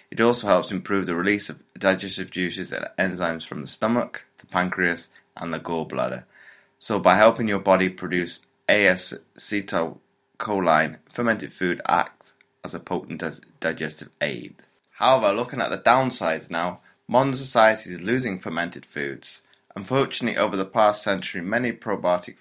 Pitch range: 85-100 Hz